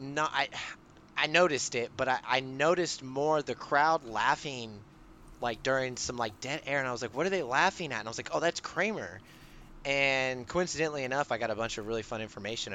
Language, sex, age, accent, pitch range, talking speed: English, male, 20-39, American, 100-130 Hz, 215 wpm